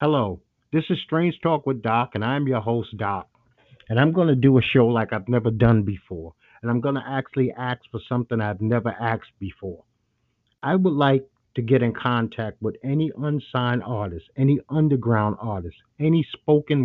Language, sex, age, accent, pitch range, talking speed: English, male, 50-69, American, 115-145 Hz, 185 wpm